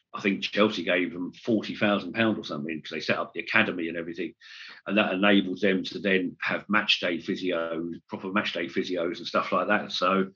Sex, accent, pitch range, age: male, British, 95-110 Hz, 50-69